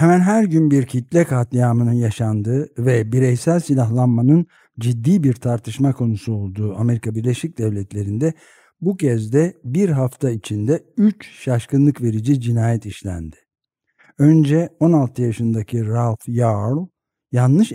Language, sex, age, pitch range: Turkish, male, 60-79, 115-150 Hz